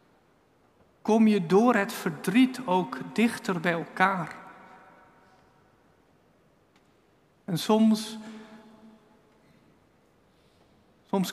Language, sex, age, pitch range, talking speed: Dutch, male, 50-69, 165-215 Hz, 65 wpm